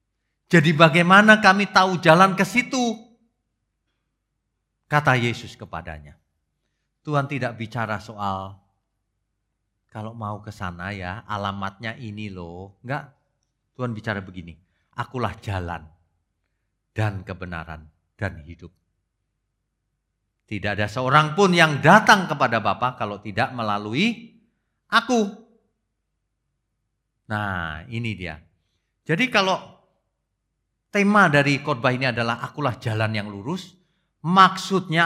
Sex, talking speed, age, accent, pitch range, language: male, 100 wpm, 40-59, native, 100-160 Hz, Indonesian